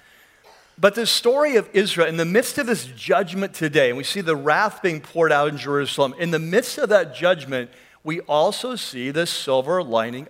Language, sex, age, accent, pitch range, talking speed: English, male, 50-69, American, 155-200 Hz, 200 wpm